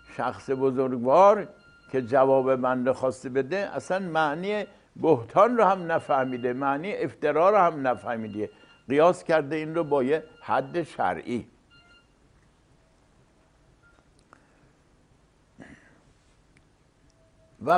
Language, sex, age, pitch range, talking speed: English, male, 60-79, 130-195 Hz, 90 wpm